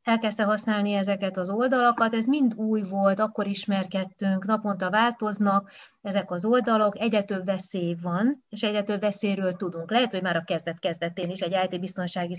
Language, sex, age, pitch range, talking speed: Hungarian, female, 30-49, 185-220 Hz, 155 wpm